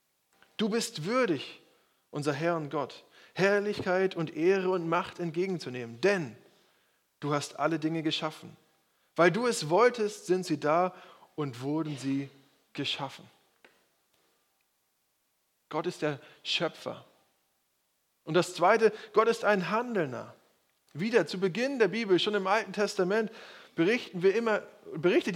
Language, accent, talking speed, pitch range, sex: German, German, 120 wpm, 155-205 Hz, male